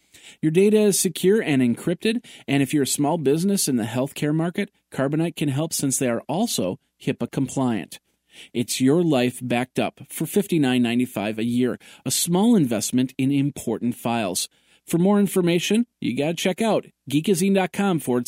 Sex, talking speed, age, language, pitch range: male, 165 wpm, 40-59, English, 110-160 Hz